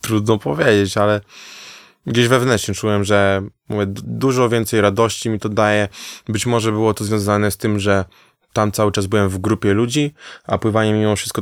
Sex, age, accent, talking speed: male, 20-39, native, 175 wpm